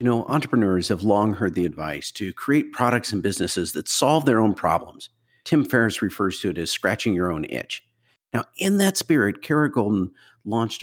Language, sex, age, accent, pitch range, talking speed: English, male, 50-69, American, 95-125 Hz, 195 wpm